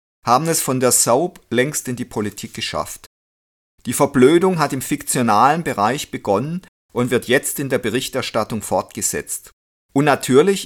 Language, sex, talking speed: German, male, 145 wpm